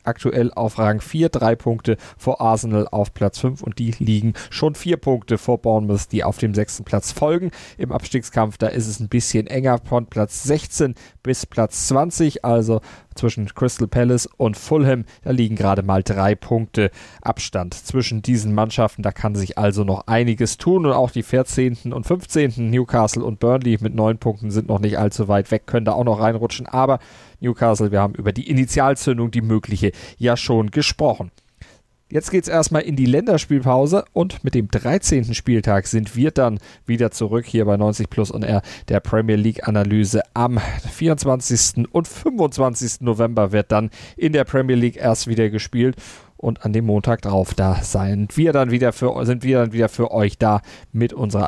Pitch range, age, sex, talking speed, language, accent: 105-125 Hz, 30-49, male, 180 wpm, German, German